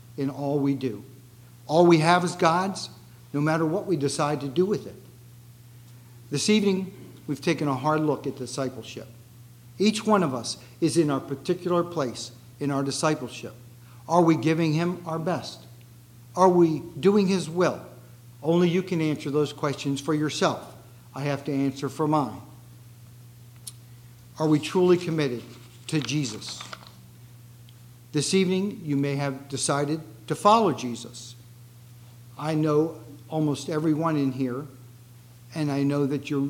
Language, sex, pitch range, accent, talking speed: English, male, 120-160 Hz, American, 145 wpm